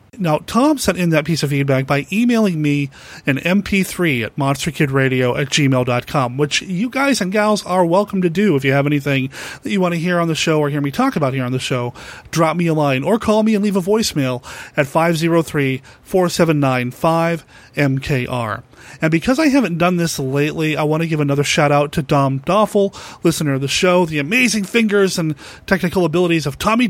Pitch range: 140-190 Hz